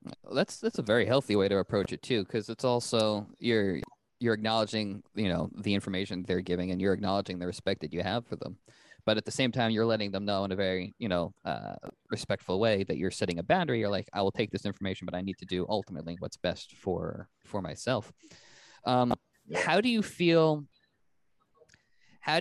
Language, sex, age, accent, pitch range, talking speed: English, male, 20-39, American, 95-120 Hz, 210 wpm